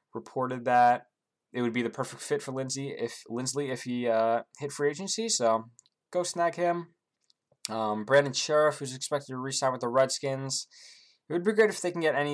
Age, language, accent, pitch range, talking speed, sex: 20-39, English, American, 125-170 Hz, 200 wpm, male